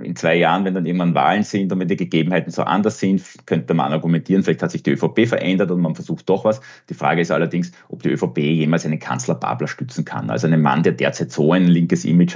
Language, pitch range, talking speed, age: German, 75-100 Hz, 250 wpm, 30-49